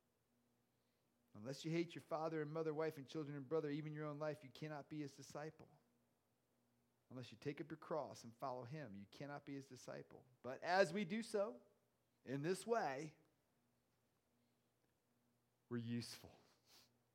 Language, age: English, 40-59